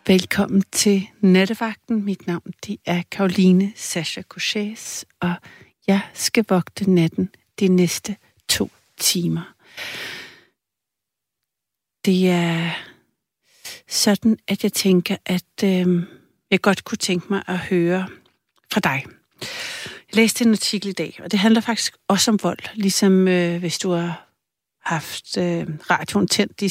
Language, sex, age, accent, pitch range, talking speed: Danish, female, 60-79, native, 180-210 Hz, 135 wpm